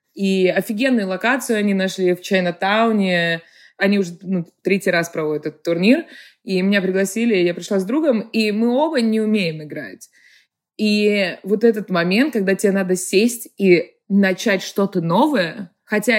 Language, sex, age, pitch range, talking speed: Russian, female, 20-39, 170-215 Hz, 150 wpm